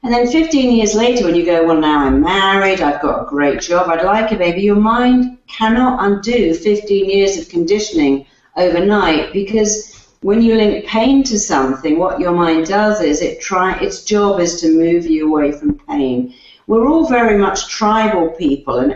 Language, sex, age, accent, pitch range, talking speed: English, female, 50-69, British, 160-215 Hz, 190 wpm